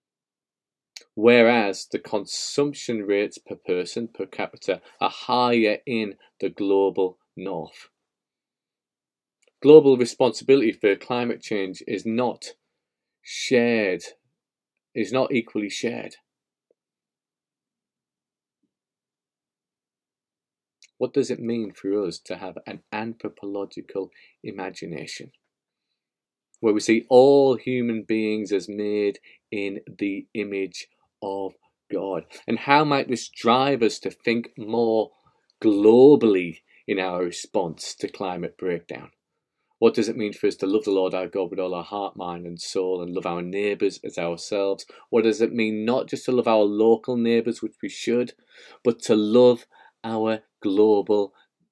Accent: British